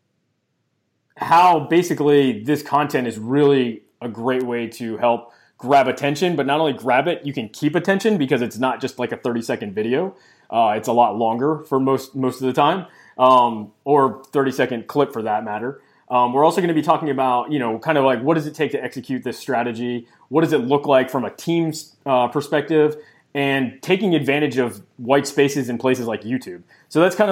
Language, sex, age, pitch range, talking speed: English, male, 20-39, 115-140 Hz, 205 wpm